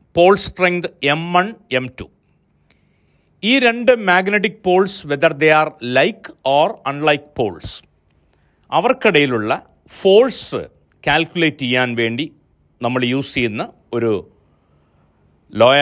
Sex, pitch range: male, 130-190 Hz